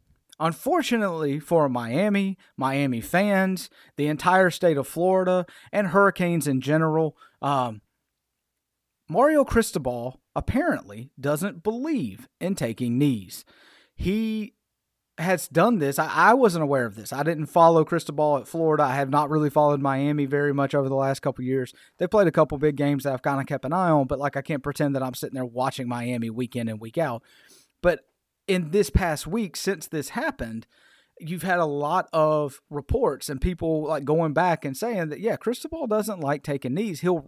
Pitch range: 140-190 Hz